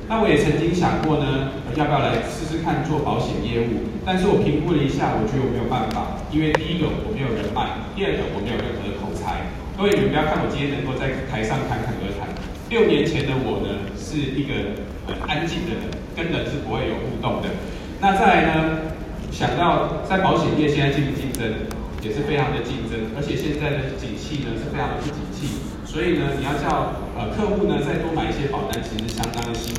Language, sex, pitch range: Chinese, male, 115-155 Hz